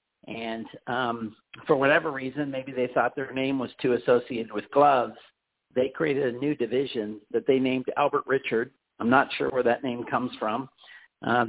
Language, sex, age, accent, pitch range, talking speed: English, male, 50-69, American, 125-160 Hz, 180 wpm